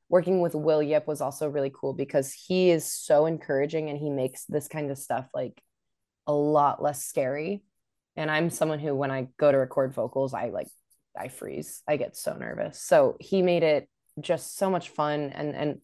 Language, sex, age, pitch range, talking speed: English, female, 20-39, 145-190 Hz, 200 wpm